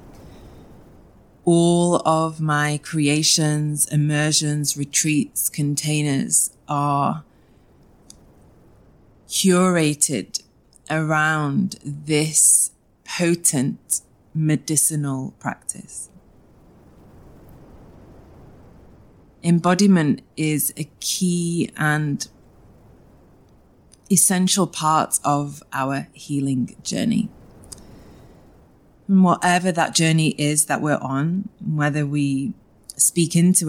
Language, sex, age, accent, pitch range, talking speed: English, female, 20-39, British, 145-170 Hz, 65 wpm